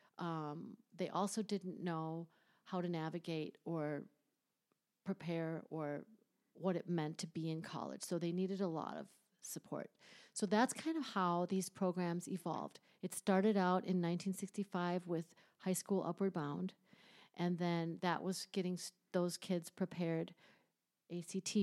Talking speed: 145 wpm